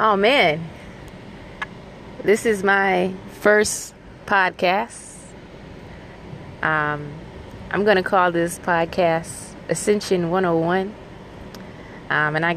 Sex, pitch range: female, 155-185 Hz